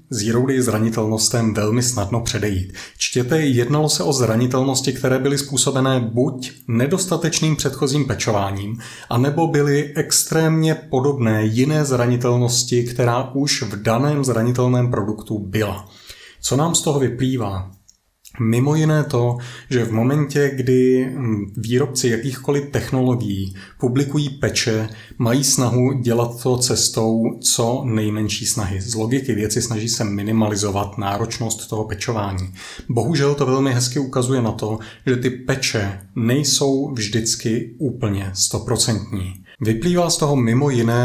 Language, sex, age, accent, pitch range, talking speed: Czech, male, 30-49, native, 110-130 Hz, 120 wpm